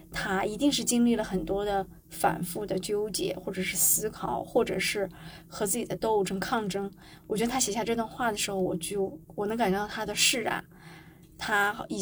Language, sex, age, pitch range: Chinese, female, 20-39, 190-240 Hz